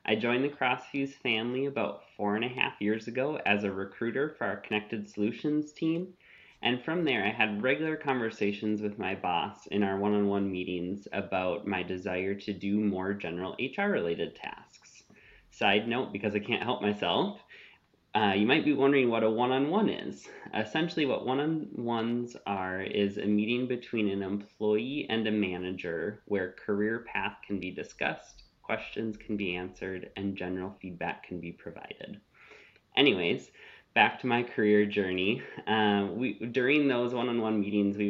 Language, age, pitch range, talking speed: English, 20-39, 100-125 Hz, 170 wpm